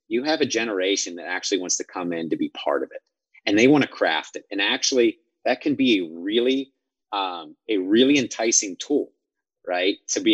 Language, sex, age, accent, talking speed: English, male, 30-49, American, 205 wpm